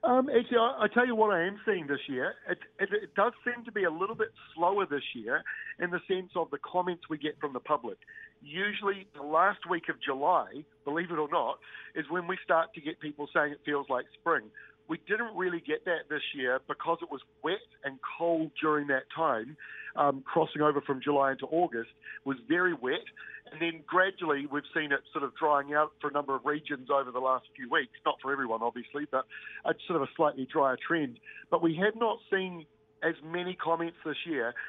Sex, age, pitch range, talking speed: male, 50-69, 145-185 Hz, 215 wpm